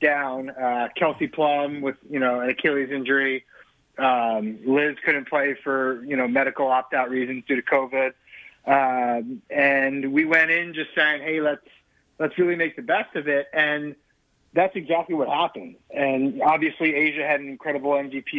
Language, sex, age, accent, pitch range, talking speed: English, male, 30-49, American, 130-150 Hz, 170 wpm